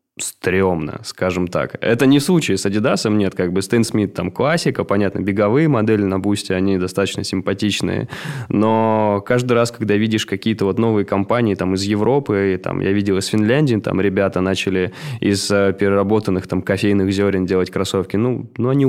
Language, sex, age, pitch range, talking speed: Russian, male, 20-39, 95-110 Hz, 170 wpm